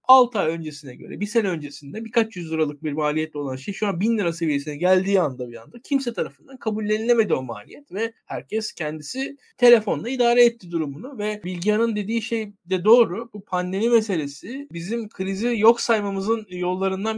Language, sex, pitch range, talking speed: Turkish, male, 160-215 Hz, 170 wpm